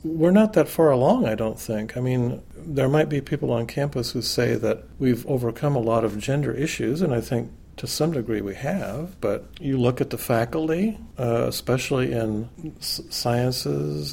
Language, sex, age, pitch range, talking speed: English, male, 50-69, 115-140 Hz, 185 wpm